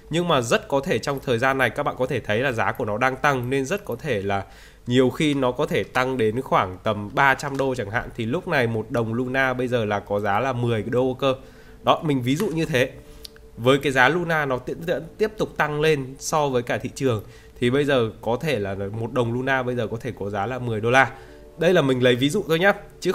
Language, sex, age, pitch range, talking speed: Vietnamese, male, 20-39, 110-145 Hz, 260 wpm